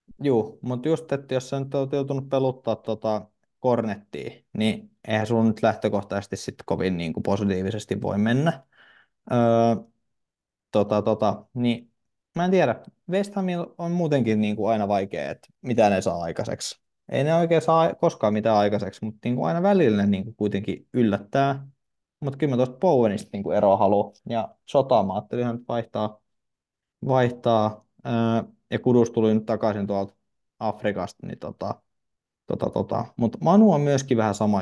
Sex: male